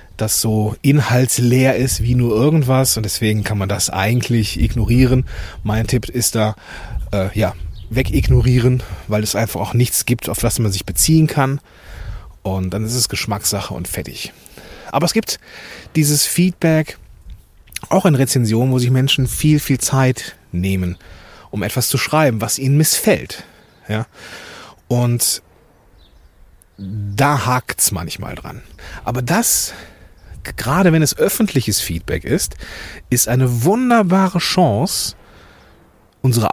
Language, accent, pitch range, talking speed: German, German, 100-135 Hz, 135 wpm